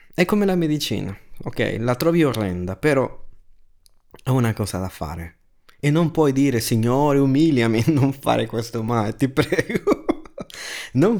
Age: 30-49